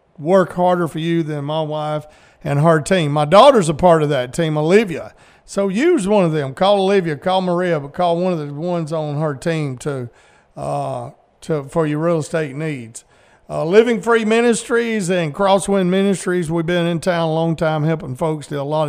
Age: 40-59